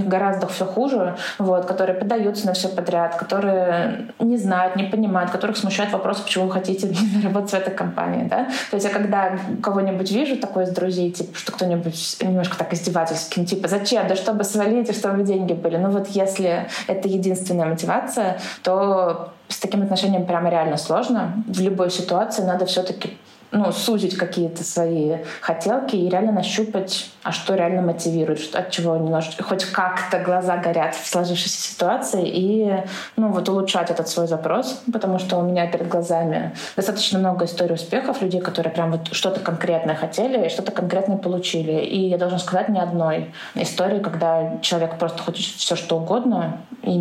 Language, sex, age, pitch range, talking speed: Russian, female, 20-39, 170-200 Hz, 170 wpm